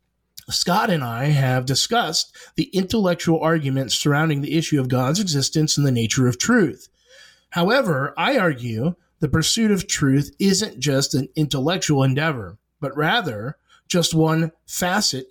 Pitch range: 135-170 Hz